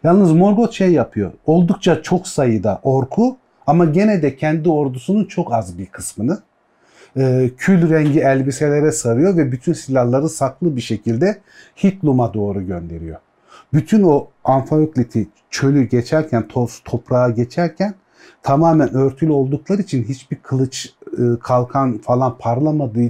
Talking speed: 120 wpm